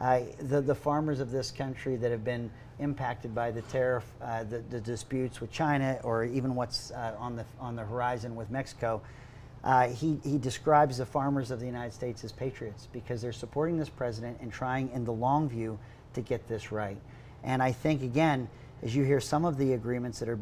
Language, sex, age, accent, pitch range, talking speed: English, male, 40-59, American, 120-135 Hz, 210 wpm